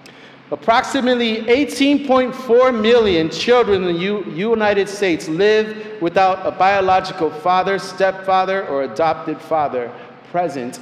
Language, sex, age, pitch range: English, male, 40-59, 165-225 Hz